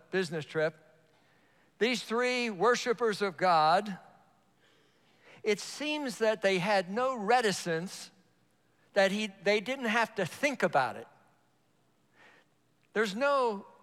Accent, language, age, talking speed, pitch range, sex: American, English, 50-69, 110 wpm, 155-220 Hz, male